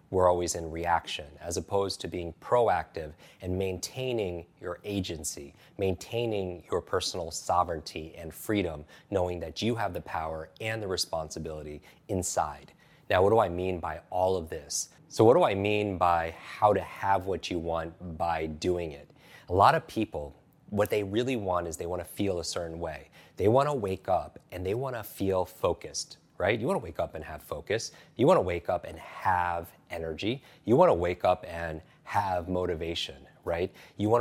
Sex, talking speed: male, 190 wpm